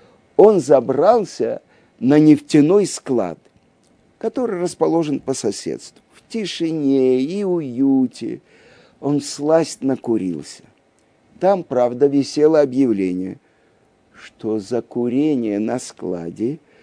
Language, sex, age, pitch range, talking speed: Russian, male, 50-69, 120-185 Hz, 90 wpm